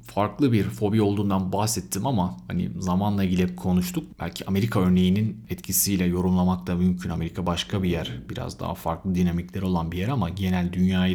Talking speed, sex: 165 wpm, male